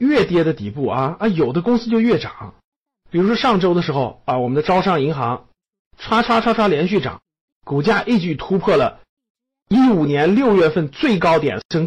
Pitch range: 155-245 Hz